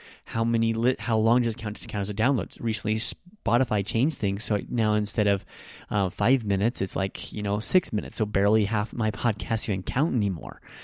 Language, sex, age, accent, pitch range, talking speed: English, male, 30-49, American, 105-125 Hz, 210 wpm